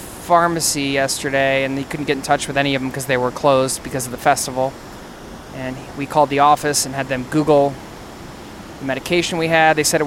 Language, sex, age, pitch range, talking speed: English, male, 20-39, 140-170 Hz, 215 wpm